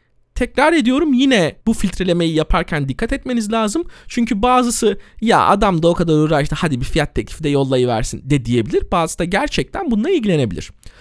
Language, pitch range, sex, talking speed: Turkish, 145-230 Hz, male, 165 wpm